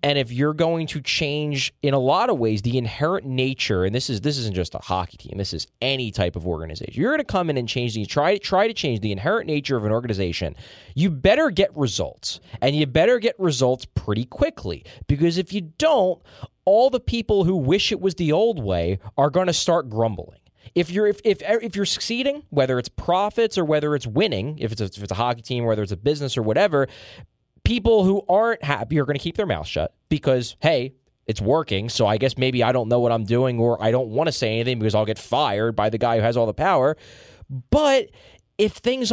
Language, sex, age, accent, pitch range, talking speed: English, male, 20-39, American, 115-170 Hz, 235 wpm